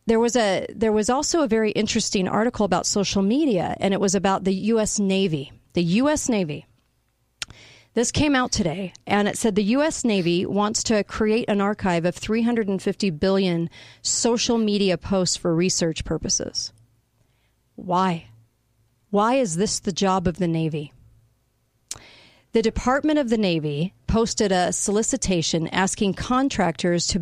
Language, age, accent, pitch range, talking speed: English, 40-59, American, 170-215 Hz, 150 wpm